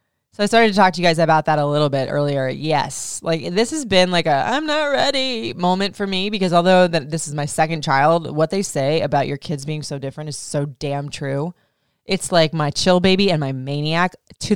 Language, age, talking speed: English, 20-39, 230 wpm